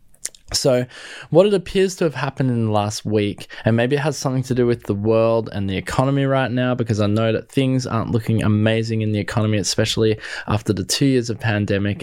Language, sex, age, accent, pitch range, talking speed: English, male, 20-39, Australian, 105-135 Hz, 220 wpm